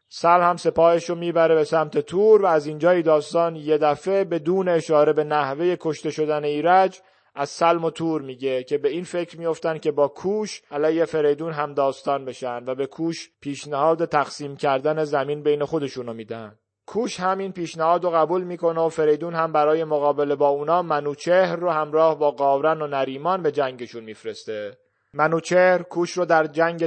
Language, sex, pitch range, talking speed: Persian, male, 145-170 Hz, 170 wpm